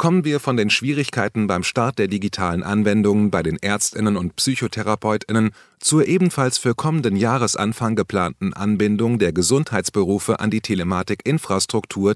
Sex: male